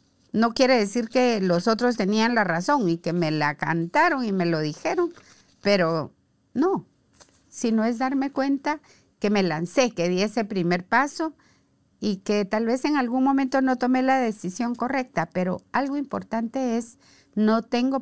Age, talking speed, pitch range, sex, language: 50-69, 165 wpm, 165-230 Hz, female, Spanish